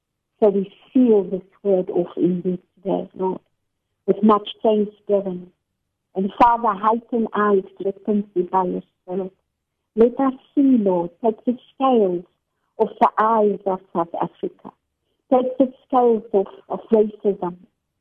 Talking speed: 135 wpm